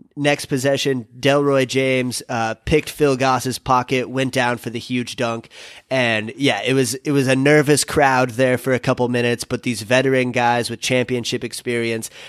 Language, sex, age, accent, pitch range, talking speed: English, male, 30-49, American, 115-135 Hz, 175 wpm